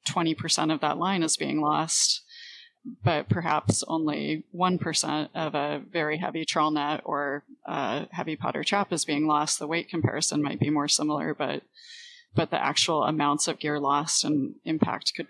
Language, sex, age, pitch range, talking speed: English, female, 30-49, 150-180 Hz, 170 wpm